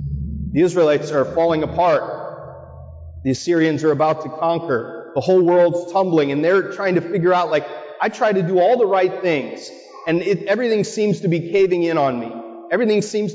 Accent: American